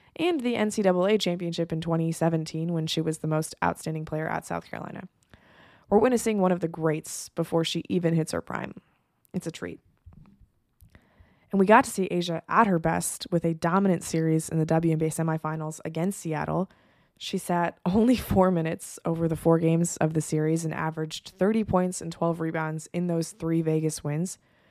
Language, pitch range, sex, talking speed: English, 160-185 Hz, female, 180 wpm